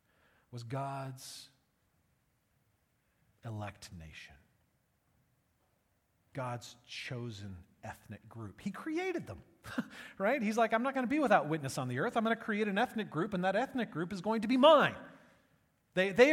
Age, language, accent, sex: 40-59, English, American, male